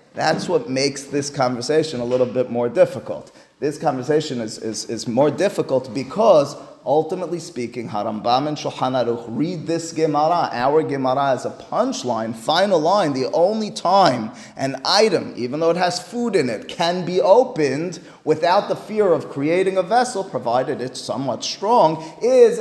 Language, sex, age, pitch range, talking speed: English, male, 30-49, 130-175 Hz, 155 wpm